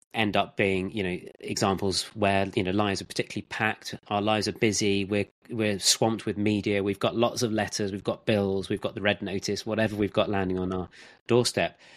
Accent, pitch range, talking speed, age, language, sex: British, 100-125 Hz, 210 wpm, 30-49, English, male